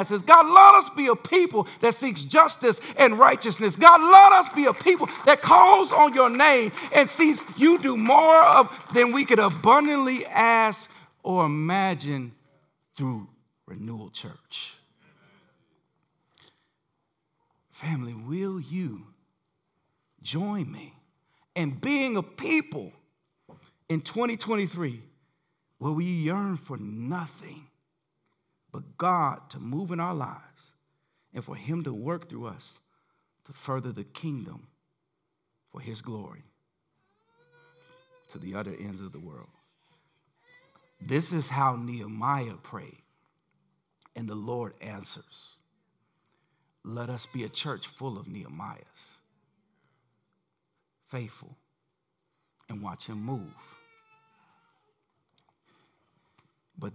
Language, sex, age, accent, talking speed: English, male, 50-69, American, 110 wpm